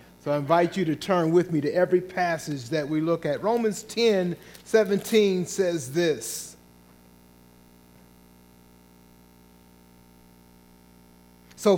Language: English